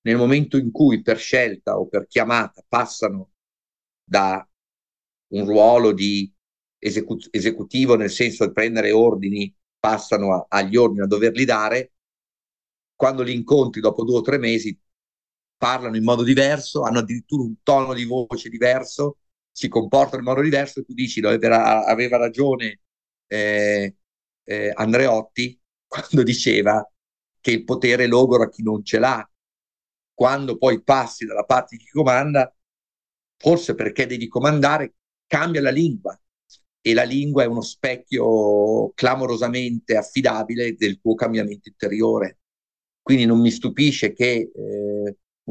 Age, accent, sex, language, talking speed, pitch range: 50-69, native, male, Italian, 140 wpm, 105-130 Hz